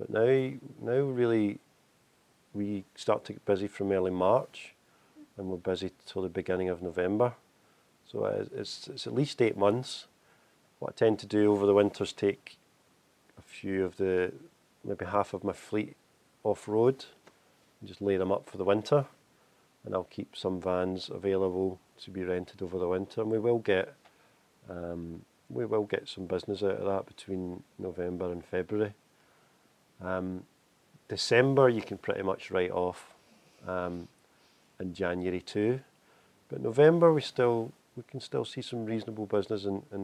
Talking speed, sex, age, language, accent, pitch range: 165 wpm, male, 40-59, English, British, 95-110 Hz